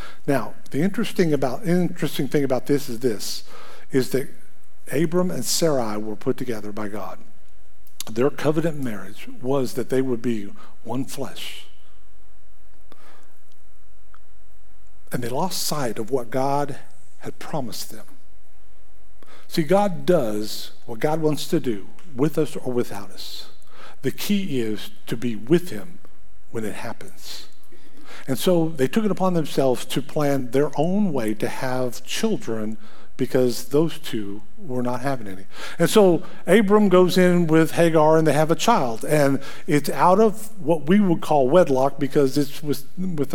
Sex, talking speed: male, 150 wpm